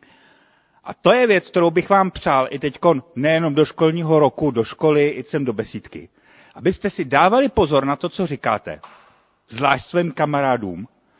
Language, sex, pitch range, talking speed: Czech, male, 135-180 Hz, 165 wpm